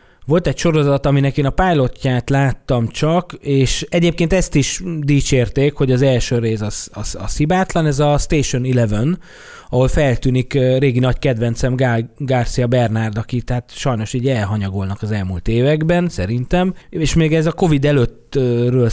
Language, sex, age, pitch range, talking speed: Hungarian, male, 20-39, 120-150 Hz, 145 wpm